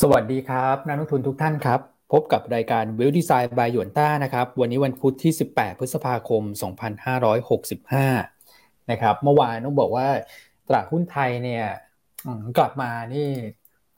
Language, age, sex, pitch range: Thai, 20-39, male, 115-140 Hz